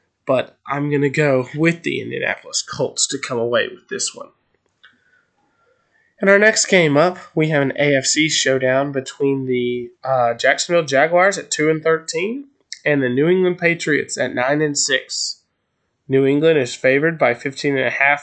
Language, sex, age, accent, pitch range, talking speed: English, male, 20-39, American, 125-145 Hz, 170 wpm